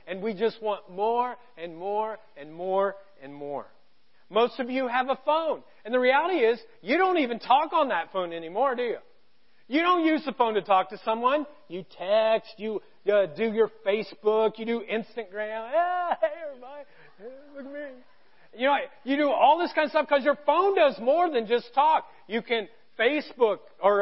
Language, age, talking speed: English, 40-59, 190 wpm